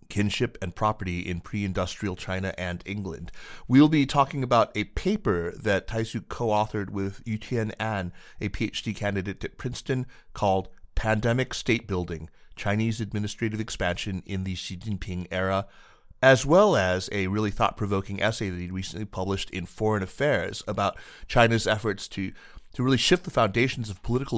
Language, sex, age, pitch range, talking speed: English, male, 30-49, 95-115 Hz, 160 wpm